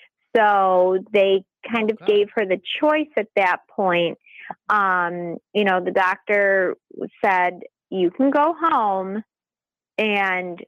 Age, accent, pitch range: 30-49, American, 180-210 Hz